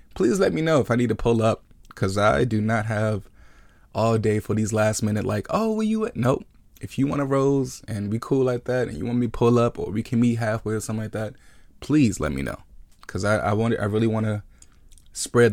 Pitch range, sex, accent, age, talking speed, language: 100-120 Hz, male, American, 20-39, 255 wpm, English